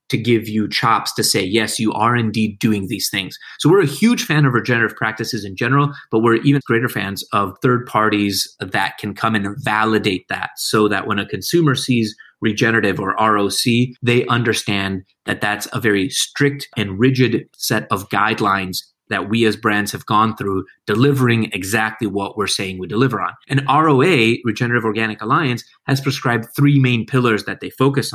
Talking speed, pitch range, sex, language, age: 185 wpm, 105-125 Hz, male, English, 30-49